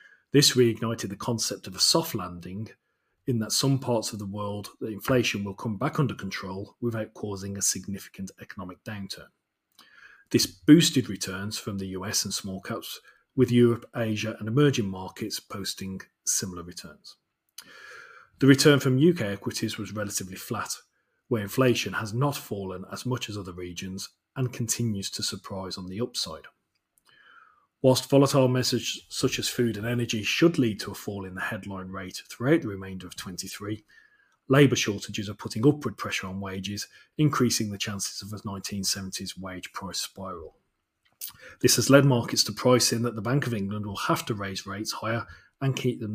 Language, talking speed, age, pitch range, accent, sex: English, 170 wpm, 40-59, 95-120 Hz, British, male